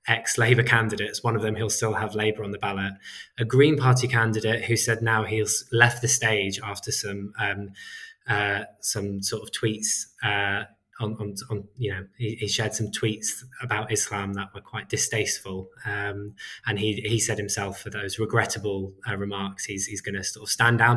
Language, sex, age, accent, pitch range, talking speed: English, male, 20-39, British, 105-120 Hz, 190 wpm